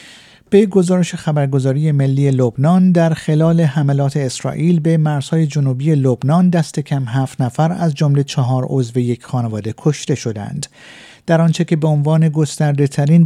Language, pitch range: Persian, 135-165 Hz